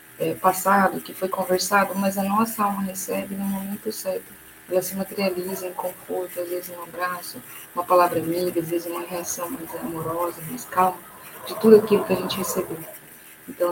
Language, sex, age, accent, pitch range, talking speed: Portuguese, female, 20-39, Brazilian, 170-195 Hz, 175 wpm